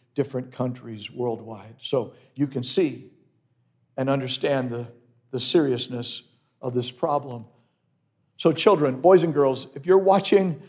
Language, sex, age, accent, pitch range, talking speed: English, male, 50-69, American, 130-190 Hz, 130 wpm